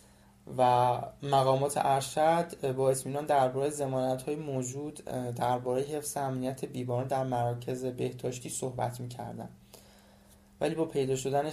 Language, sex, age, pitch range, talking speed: Persian, male, 20-39, 125-140 Hz, 115 wpm